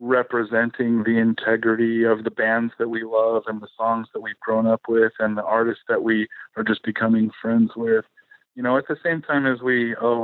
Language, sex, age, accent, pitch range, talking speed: English, male, 40-59, American, 110-130 Hz, 210 wpm